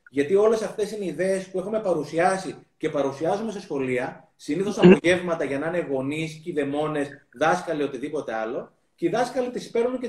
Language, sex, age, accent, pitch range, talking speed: Greek, male, 30-49, native, 165-255 Hz, 175 wpm